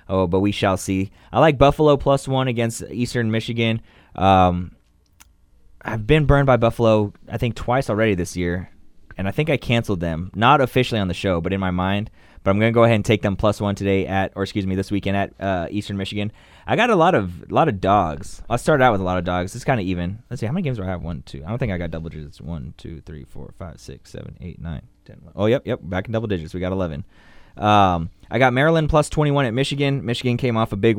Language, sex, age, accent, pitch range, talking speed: English, male, 20-39, American, 95-115 Hz, 260 wpm